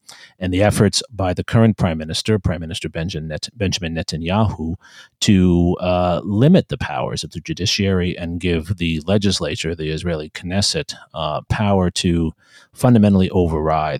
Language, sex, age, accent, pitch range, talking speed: English, male, 40-59, American, 85-105 Hz, 135 wpm